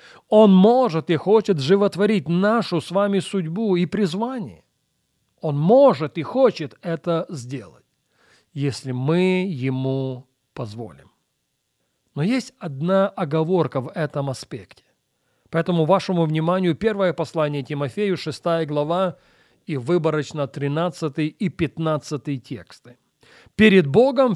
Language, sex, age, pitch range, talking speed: Russian, male, 40-59, 140-195 Hz, 110 wpm